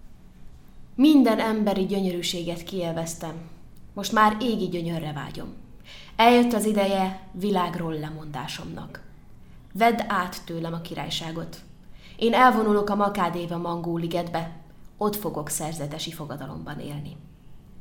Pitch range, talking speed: 160-195 Hz, 100 wpm